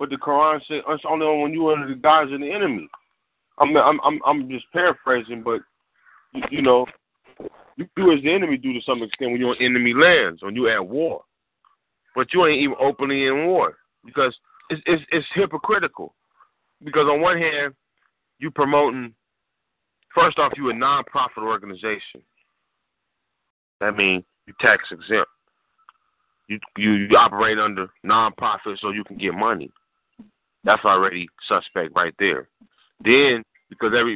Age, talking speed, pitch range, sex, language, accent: 30-49, 160 wpm, 105-150 Hz, male, English, American